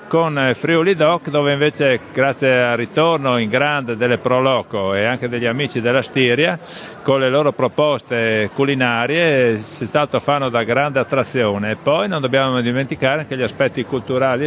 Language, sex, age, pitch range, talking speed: Italian, male, 50-69, 115-145 Hz, 160 wpm